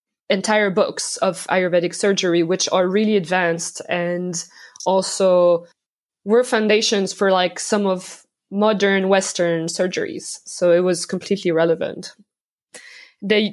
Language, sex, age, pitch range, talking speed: English, female, 20-39, 185-225 Hz, 115 wpm